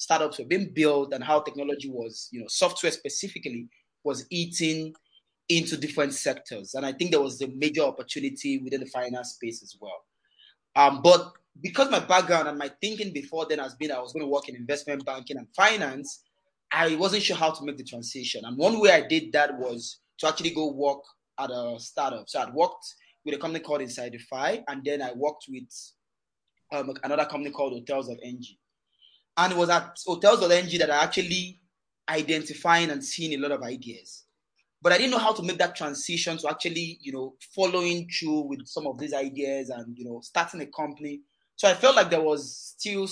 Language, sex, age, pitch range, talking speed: English, male, 20-39, 135-170 Hz, 200 wpm